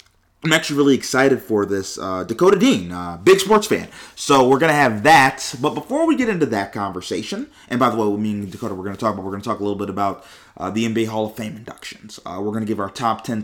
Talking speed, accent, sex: 260 wpm, American, male